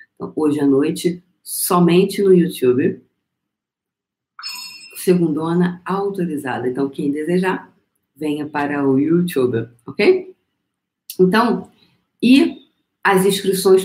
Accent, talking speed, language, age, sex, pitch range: Brazilian, 85 wpm, Portuguese, 40-59, female, 145-200 Hz